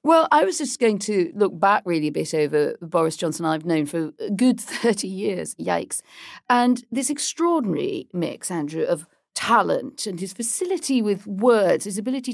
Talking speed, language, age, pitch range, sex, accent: 175 wpm, English, 40-59, 200-265 Hz, female, British